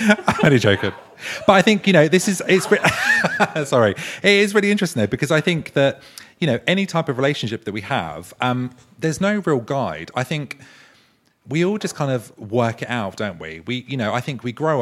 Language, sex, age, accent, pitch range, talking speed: English, male, 30-49, British, 100-135 Hz, 220 wpm